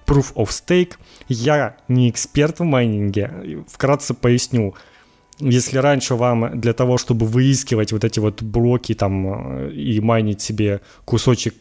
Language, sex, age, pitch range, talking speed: Ukrainian, male, 20-39, 105-130 Hz, 135 wpm